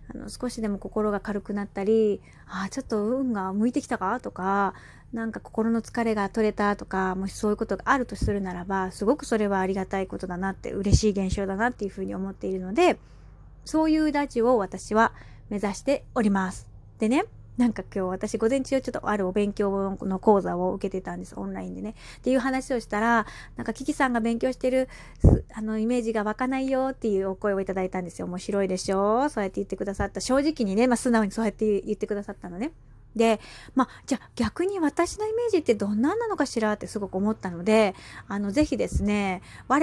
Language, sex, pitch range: Japanese, female, 195-240 Hz